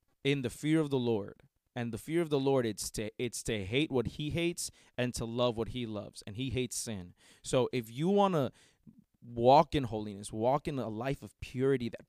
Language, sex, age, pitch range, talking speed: English, male, 20-39, 110-145 Hz, 225 wpm